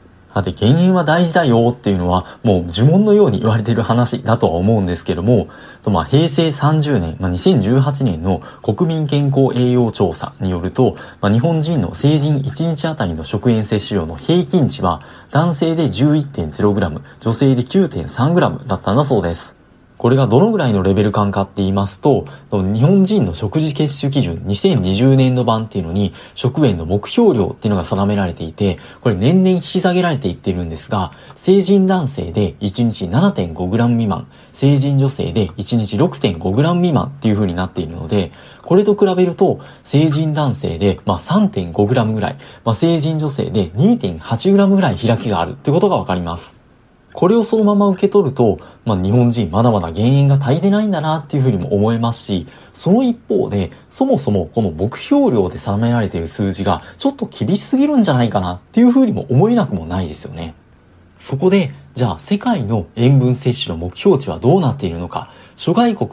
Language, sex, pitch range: Japanese, male, 100-155 Hz